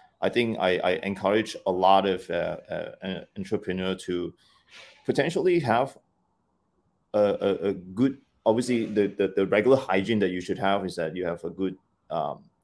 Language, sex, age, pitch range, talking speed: English, male, 30-49, 95-110 Hz, 170 wpm